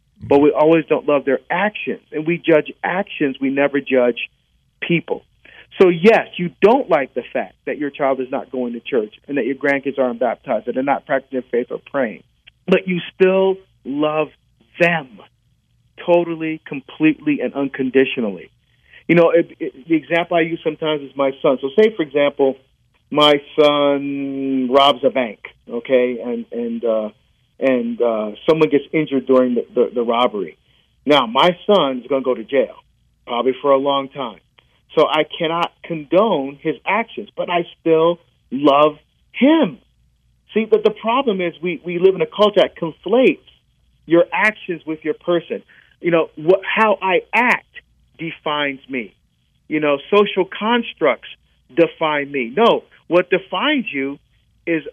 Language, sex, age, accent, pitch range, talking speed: English, male, 40-59, American, 135-170 Hz, 165 wpm